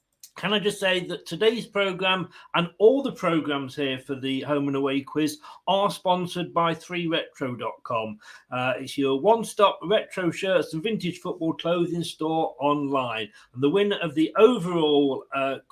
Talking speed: 160 wpm